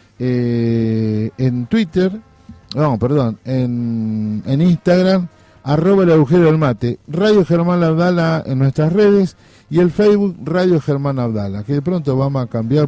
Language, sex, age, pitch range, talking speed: Spanish, male, 50-69, 115-160 Hz, 145 wpm